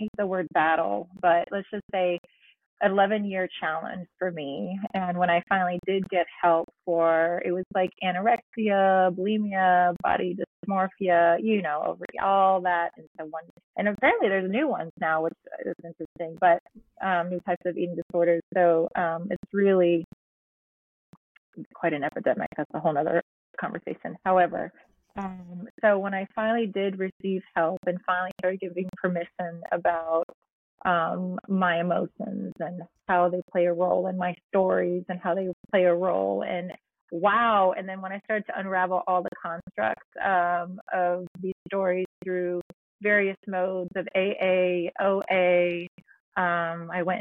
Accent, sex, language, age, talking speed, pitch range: American, female, English, 30-49, 155 wpm, 175-190 Hz